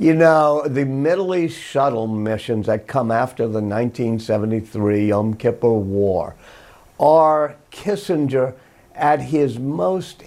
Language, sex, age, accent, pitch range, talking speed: English, male, 50-69, American, 115-145 Hz, 115 wpm